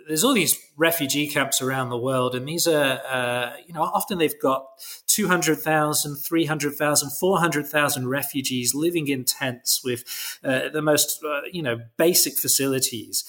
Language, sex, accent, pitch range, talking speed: English, male, British, 125-145 Hz, 150 wpm